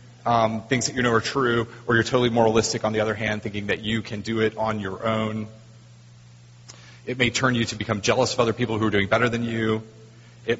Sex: male